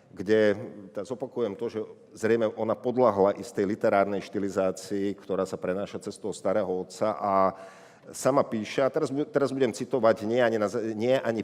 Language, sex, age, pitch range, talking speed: Slovak, male, 50-69, 100-125 Hz, 165 wpm